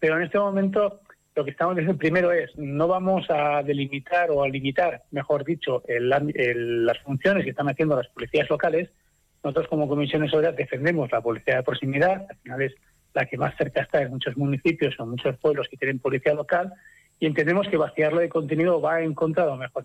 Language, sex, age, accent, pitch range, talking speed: Spanish, male, 40-59, Spanish, 140-170 Hz, 200 wpm